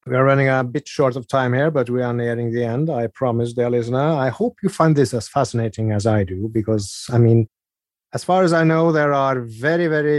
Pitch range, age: 115-135 Hz, 30-49